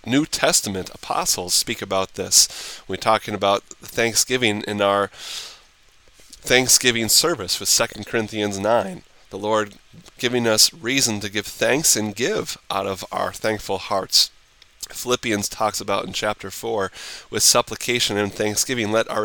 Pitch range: 105-120 Hz